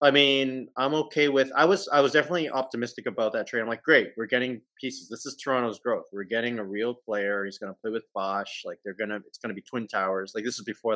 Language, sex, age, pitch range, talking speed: English, male, 30-49, 115-165 Hz, 270 wpm